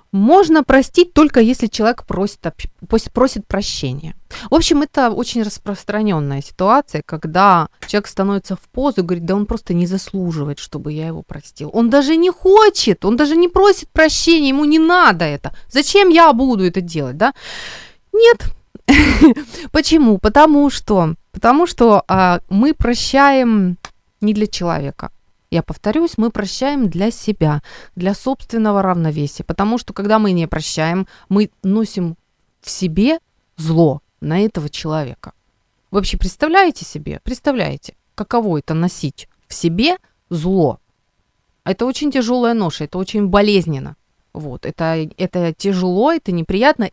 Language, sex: Ukrainian, female